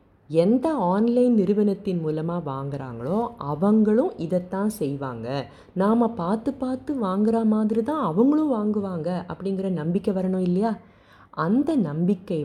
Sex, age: female, 30-49